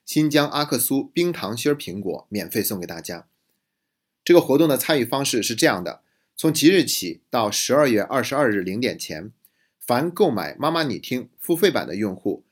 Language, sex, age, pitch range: Chinese, male, 30-49, 110-155 Hz